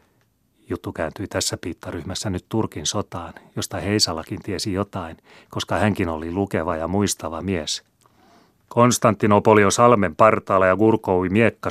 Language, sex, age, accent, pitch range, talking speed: Finnish, male, 30-49, native, 95-110 Hz, 125 wpm